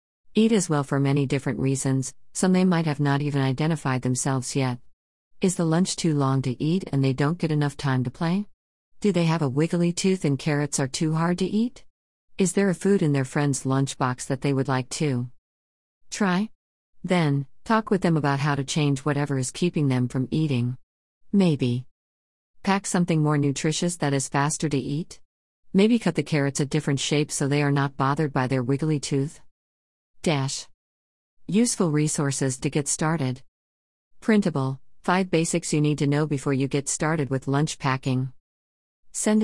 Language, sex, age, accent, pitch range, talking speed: English, female, 50-69, American, 130-165 Hz, 180 wpm